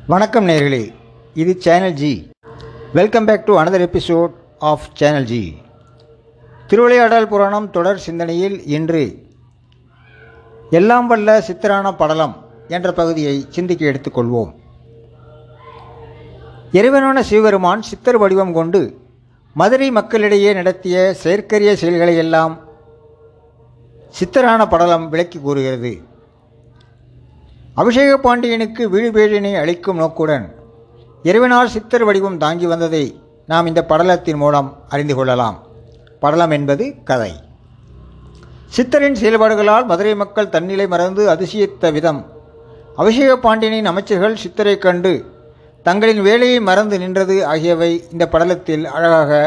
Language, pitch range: Tamil, 130-200 Hz